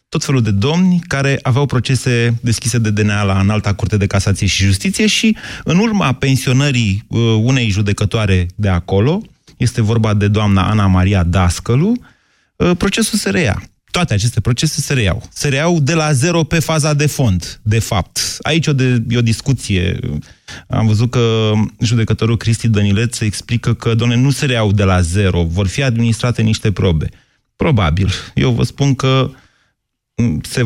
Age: 30-49